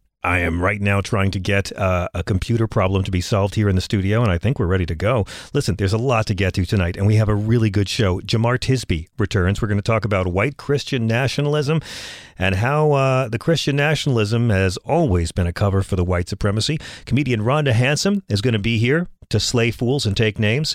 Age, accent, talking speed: 40-59, American, 230 wpm